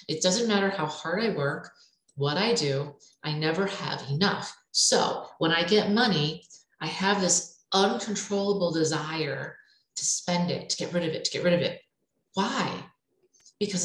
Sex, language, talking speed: female, English, 170 wpm